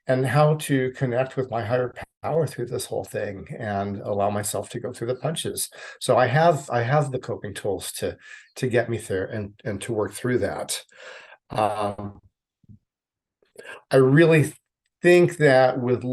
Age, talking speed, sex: 40-59, 165 wpm, male